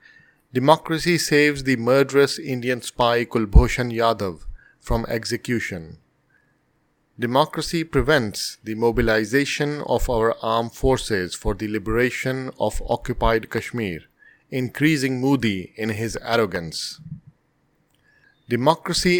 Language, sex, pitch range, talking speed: English, male, 115-140 Hz, 95 wpm